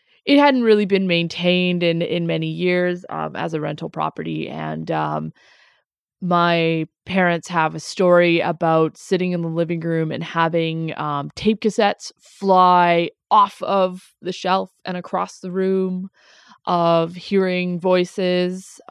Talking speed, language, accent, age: 140 wpm, English, American, 20-39